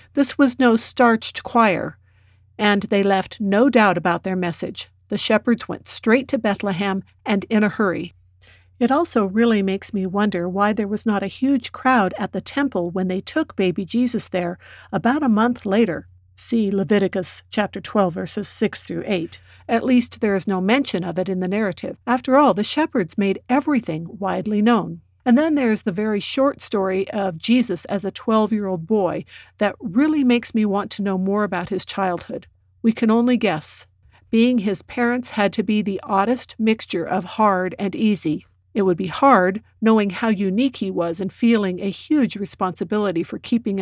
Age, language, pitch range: 50-69, English, 185-230 Hz